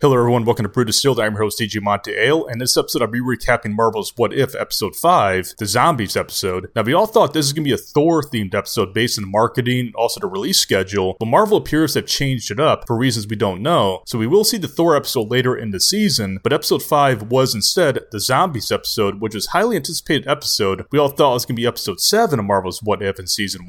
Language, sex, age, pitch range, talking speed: English, male, 30-49, 105-140 Hz, 255 wpm